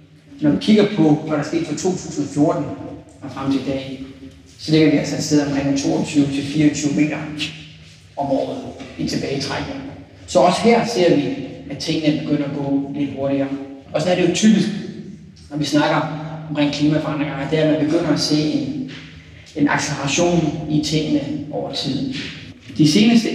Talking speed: 175 wpm